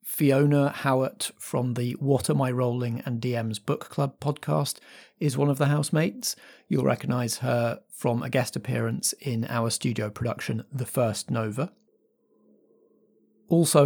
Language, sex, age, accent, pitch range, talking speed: English, male, 30-49, British, 115-145 Hz, 145 wpm